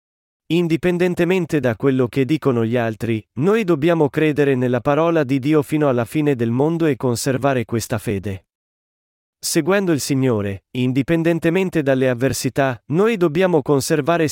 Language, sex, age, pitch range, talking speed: Italian, male, 40-59, 125-160 Hz, 135 wpm